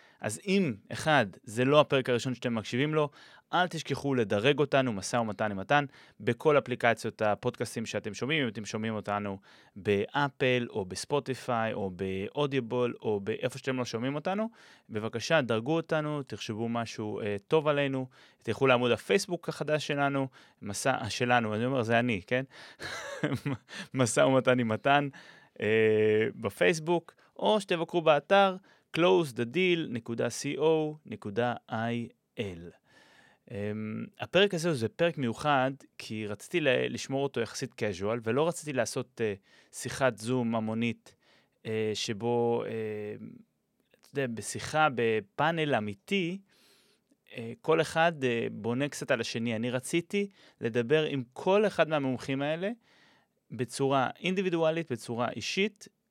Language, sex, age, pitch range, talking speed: Hebrew, male, 30-49, 115-155 Hz, 120 wpm